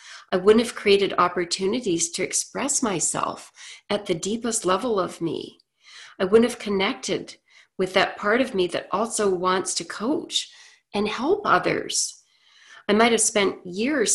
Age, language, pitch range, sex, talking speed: 40-59, English, 185-230 Hz, female, 155 wpm